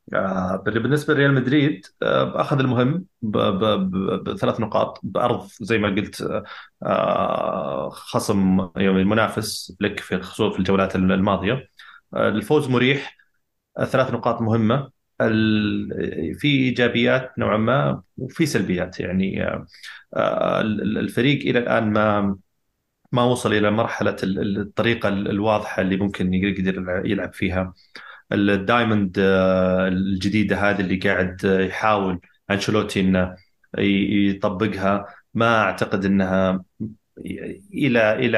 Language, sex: Arabic, male